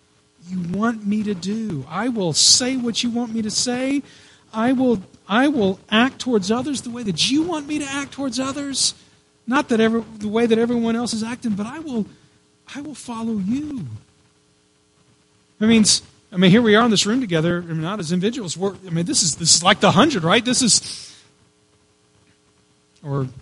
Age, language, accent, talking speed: 40-59, English, American, 195 wpm